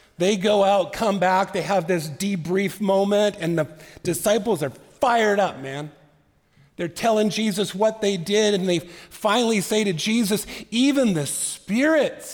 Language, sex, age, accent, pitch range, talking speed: English, male, 50-69, American, 130-195 Hz, 155 wpm